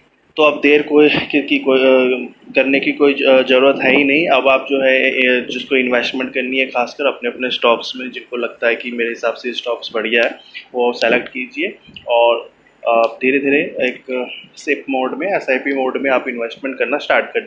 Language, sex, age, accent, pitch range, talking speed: Hindi, male, 20-39, native, 125-140 Hz, 190 wpm